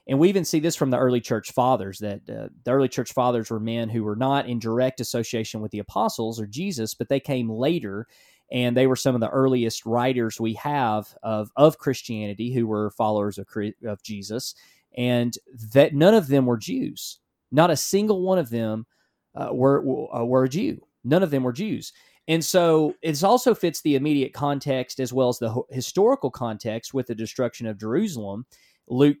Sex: male